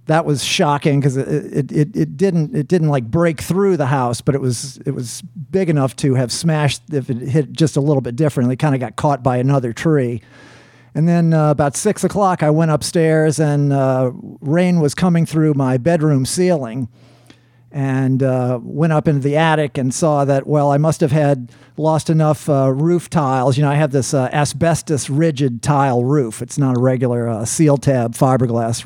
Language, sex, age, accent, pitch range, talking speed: English, male, 50-69, American, 130-155 Hz, 205 wpm